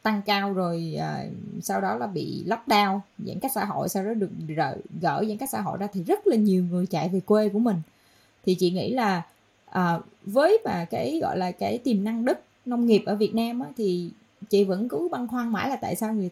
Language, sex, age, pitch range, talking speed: Vietnamese, female, 20-39, 180-235 Hz, 240 wpm